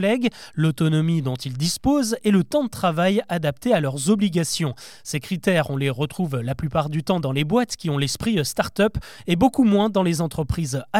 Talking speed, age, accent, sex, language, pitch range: 195 wpm, 30-49, French, male, French, 160-215 Hz